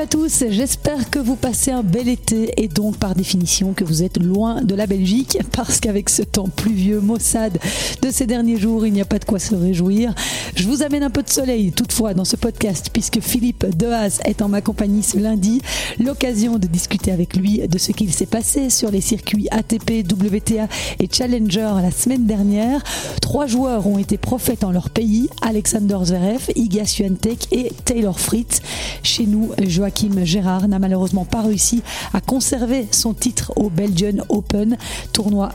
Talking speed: 185 wpm